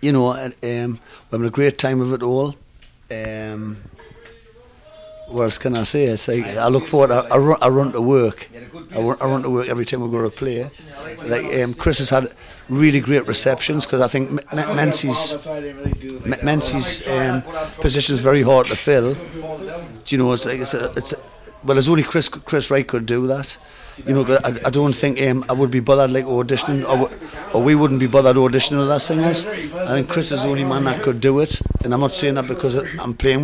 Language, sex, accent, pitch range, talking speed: English, male, British, 125-145 Hz, 225 wpm